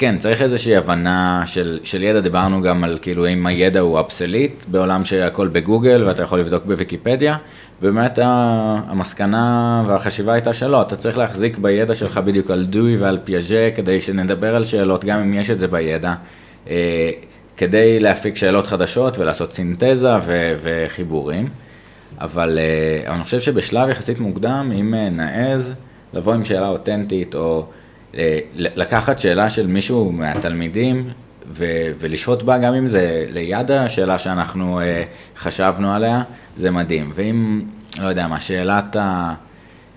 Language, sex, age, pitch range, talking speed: Hebrew, male, 20-39, 85-110 Hz, 135 wpm